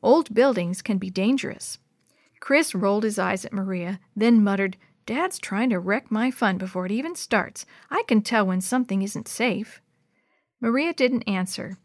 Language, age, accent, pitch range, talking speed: English, 50-69, American, 195-255 Hz, 165 wpm